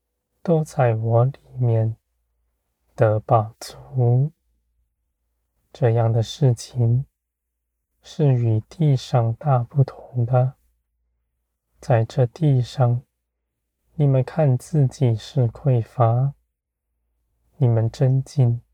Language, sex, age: Chinese, male, 20-39